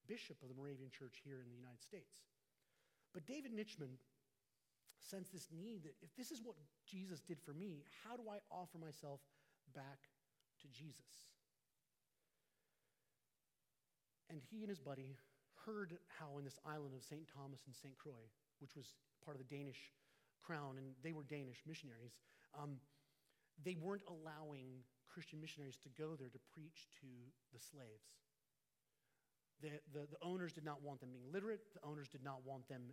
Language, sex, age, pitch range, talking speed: English, male, 30-49, 135-165 Hz, 165 wpm